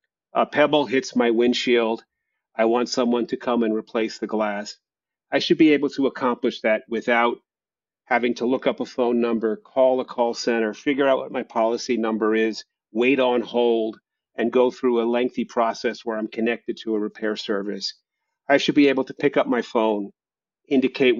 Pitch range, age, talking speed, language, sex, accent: 115-135 Hz, 40-59, 185 wpm, English, male, American